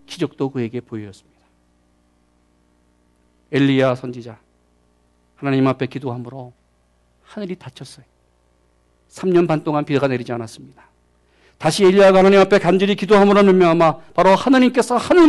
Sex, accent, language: male, native, Korean